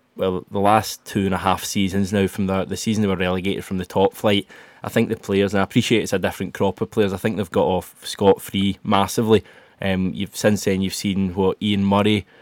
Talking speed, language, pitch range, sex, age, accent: 225 wpm, English, 95-105 Hz, male, 20-39, British